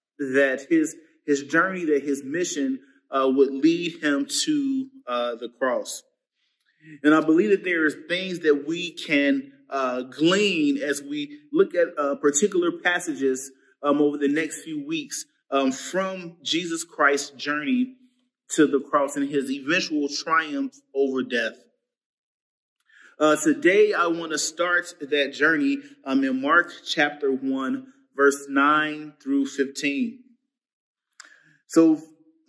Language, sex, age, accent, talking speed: English, male, 30-49, American, 130 wpm